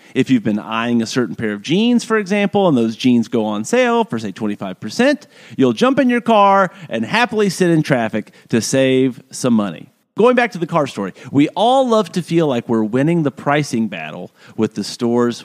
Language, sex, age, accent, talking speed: English, male, 40-59, American, 210 wpm